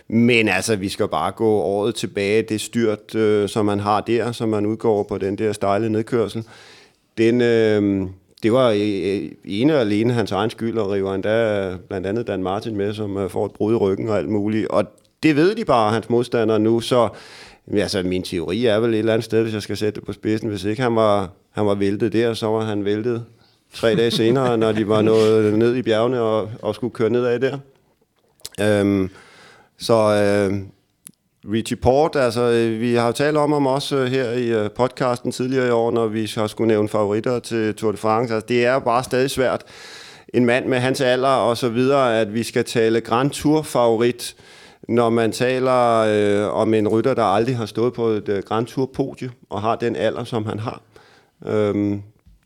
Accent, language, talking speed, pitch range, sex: native, Danish, 210 wpm, 105-120 Hz, male